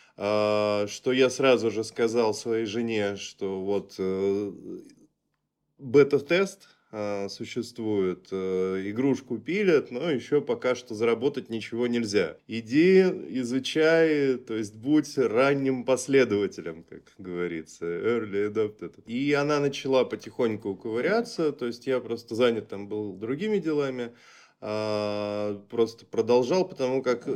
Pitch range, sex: 105-135 Hz, male